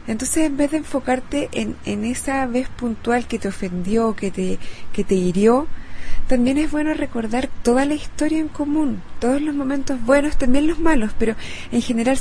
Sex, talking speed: female, 180 wpm